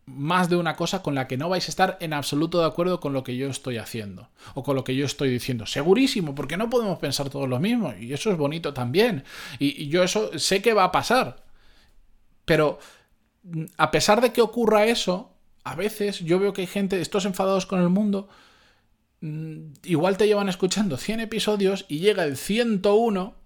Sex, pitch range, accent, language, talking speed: male, 130-175 Hz, Spanish, Spanish, 200 wpm